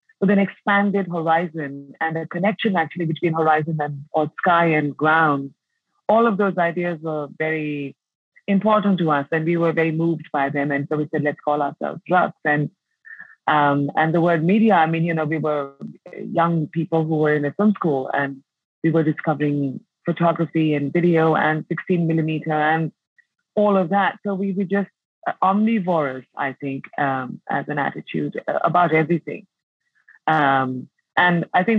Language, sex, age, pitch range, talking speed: English, female, 30-49, 150-180 Hz, 170 wpm